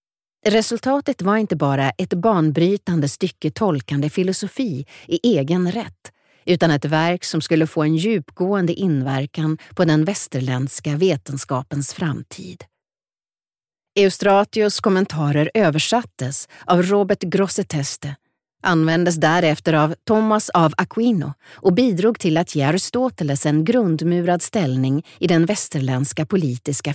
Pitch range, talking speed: 150-200 Hz, 110 wpm